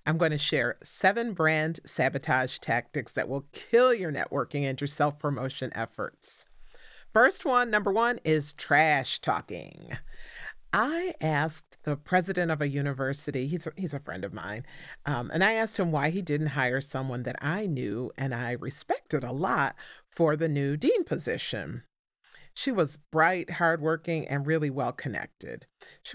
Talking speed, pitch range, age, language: 155 wpm, 140-170 Hz, 40-59, English